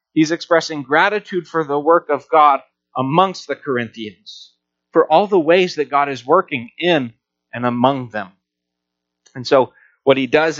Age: 30-49